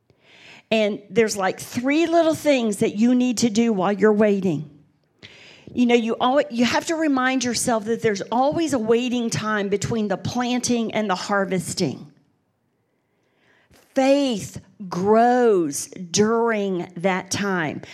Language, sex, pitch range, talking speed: English, female, 205-260 Hz, 135 wpm